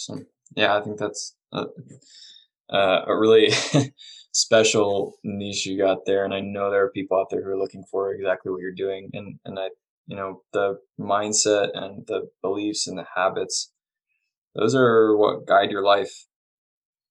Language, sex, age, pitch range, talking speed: English, male, 20-39, 100-110 Hz, 170 wpm